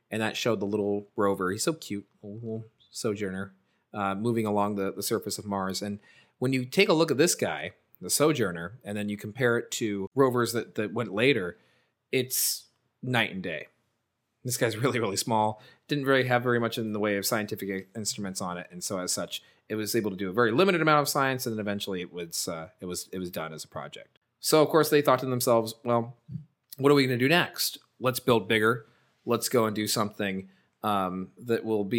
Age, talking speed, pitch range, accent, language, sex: 30-49, 225 wpm, 105-130 Hz, American, English, male